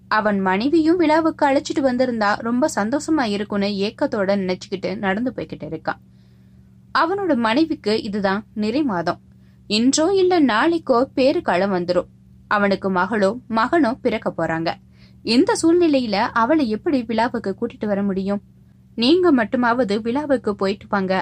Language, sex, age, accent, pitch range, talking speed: Tamil, female, 20-39, native, 185-270 Hz, 115 wpm